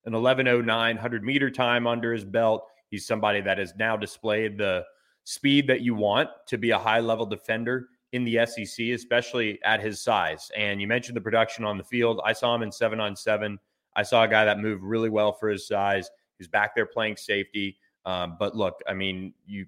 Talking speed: 210 wpm